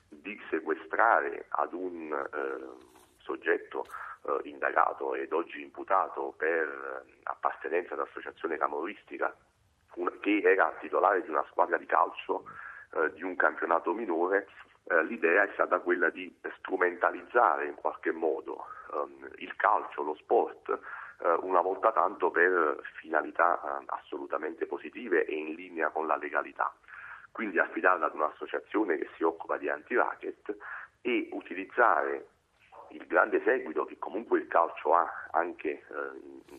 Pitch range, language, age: 355-440 Hz, Italian, 40-59